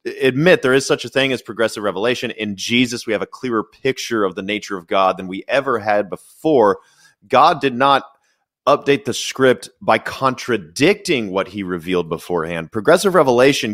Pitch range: 105-135 Hz